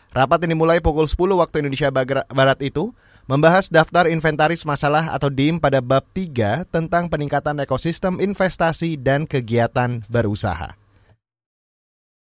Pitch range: 125-165 Hz